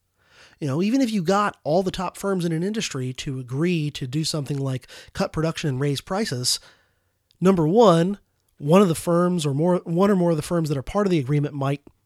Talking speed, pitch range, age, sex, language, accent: 225 wpm, 140-185 Hz, 30-49, male, English, American